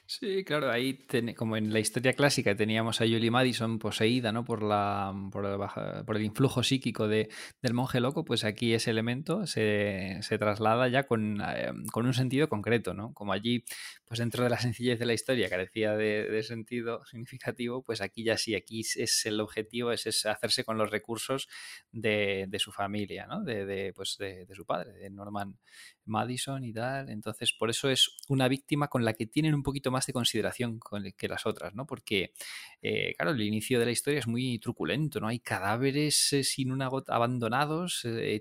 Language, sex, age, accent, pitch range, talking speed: Spanish, male, 20-39, Spanish, 105-130 Hz, 200 wpm